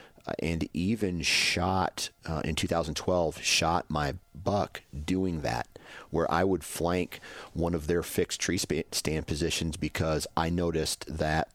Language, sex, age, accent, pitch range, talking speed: English, male, 40-59, American, 75-85 Hz, 135 wpm